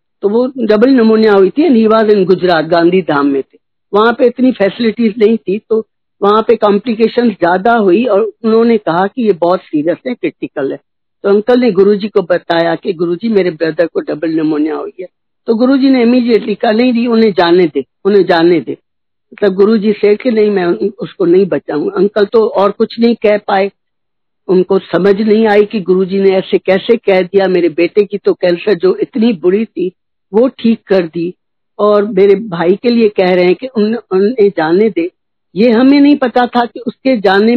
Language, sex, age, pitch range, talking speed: Hindi, female, 50-69, 185-230 Hz, 200 wpm